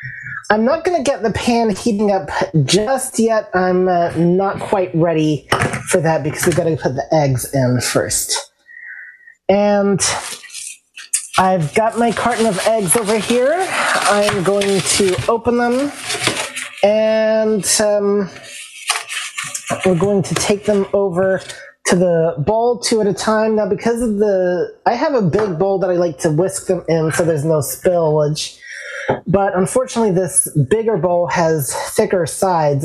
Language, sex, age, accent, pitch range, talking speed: English, male, 30-49, American, 155-205 Hz, 155 wpm